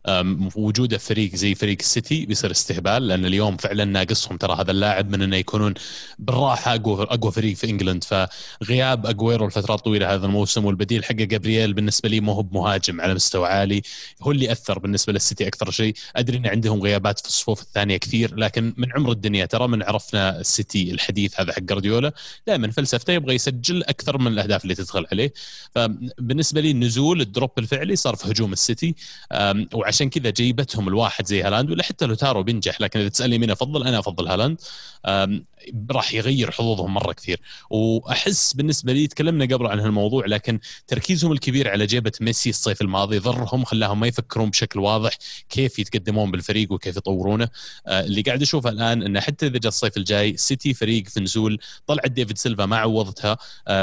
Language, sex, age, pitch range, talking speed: Arabic, male, 30-49, 100-125 Hz, 175 wpm